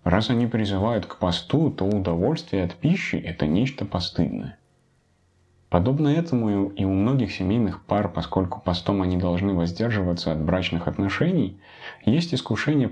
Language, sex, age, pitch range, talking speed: Russian, male, 30-49, 90-120 Hz, 140 wpm